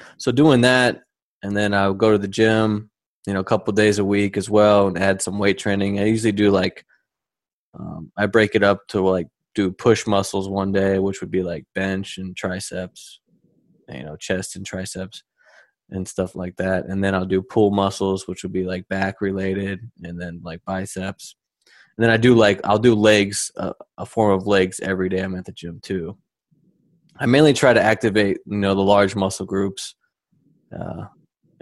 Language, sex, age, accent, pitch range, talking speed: English, male, 20-39, American, 95-105 Hz, 200 wpm